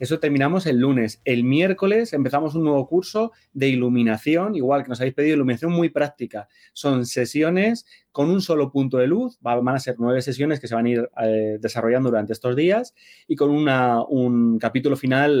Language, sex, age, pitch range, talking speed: Spanish, male, 30-49, 125-155 Hz, 185 wpm